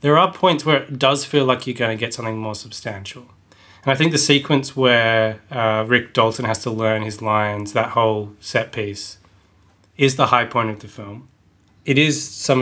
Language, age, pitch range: English, 20-39, 105-120 Hz